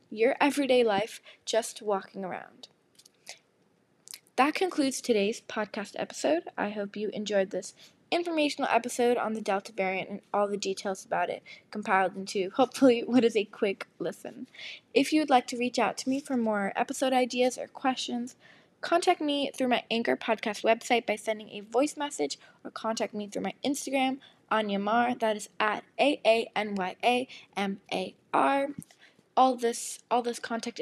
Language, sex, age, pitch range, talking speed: English, female, 10-29, 210-260 Hz, 155 wpm